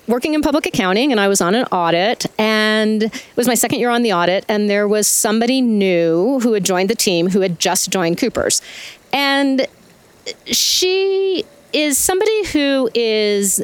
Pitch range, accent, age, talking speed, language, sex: 185-260 Hz, American, 40-59, 175 wpm, English, female